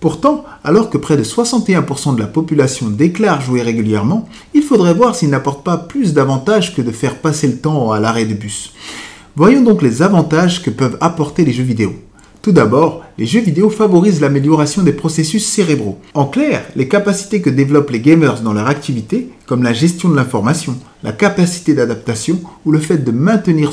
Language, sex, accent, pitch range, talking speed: French, male, French, 130-195 Hz, 185 wpm